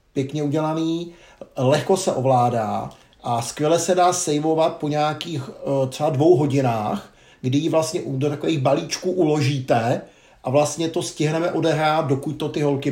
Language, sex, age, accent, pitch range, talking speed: Czech, male, 50-69, native, 130-155 Hz, 145 wpm